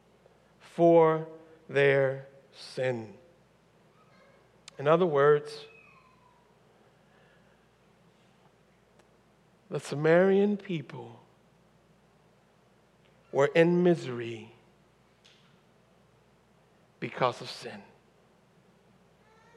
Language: English